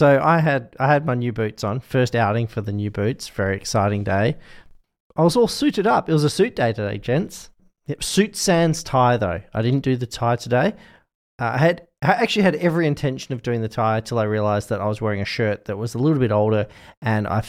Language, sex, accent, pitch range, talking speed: English, male, Australian, 110-150 Hz, 240 wpm